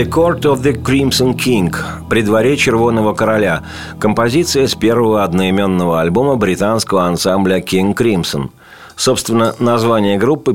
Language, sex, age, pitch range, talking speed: Russian, male, 40-59, 100-120 Hz, 125 wpm